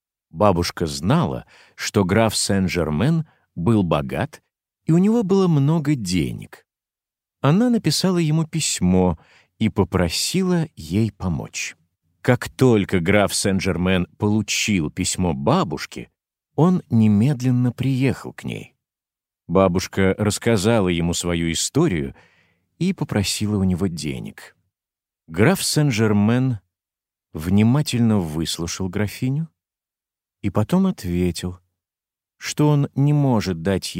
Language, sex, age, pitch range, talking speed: Slovak, male, 50-69, 90-130 Hz, 100 wpm